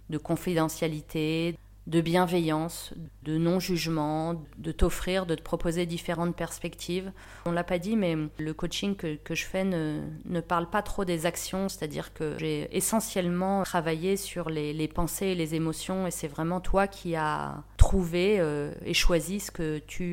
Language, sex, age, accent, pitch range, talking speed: French, female, 30-49, French, 160-190 Hz, 170 wpm